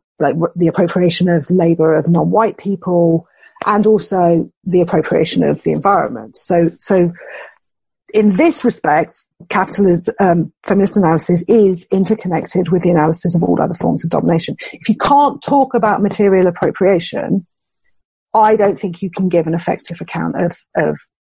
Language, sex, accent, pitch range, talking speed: English, female, British, 175-220 Hz, 150 wpm